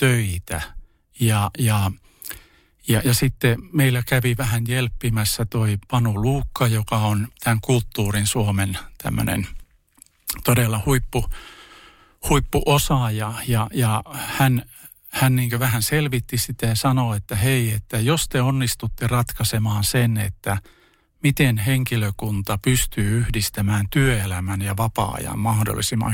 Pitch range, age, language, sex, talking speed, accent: 105-130 Hz, 50-69, Finnish, male, 115 wpm, native